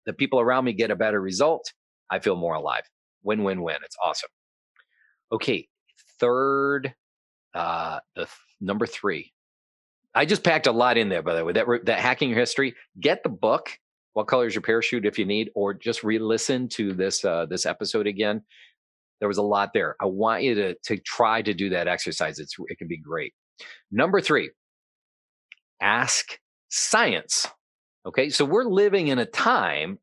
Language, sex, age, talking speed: English, male, 40-59, 170 wpm